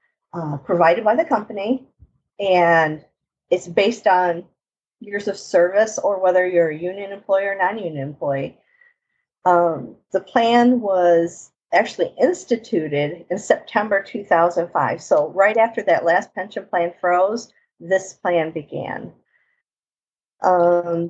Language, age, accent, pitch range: English, 50-69, American, 170-205 Hz